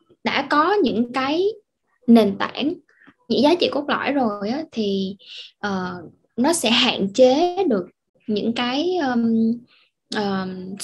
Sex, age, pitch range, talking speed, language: female, 10-29, 205-275 Hz, 135 wpm, Vietnamese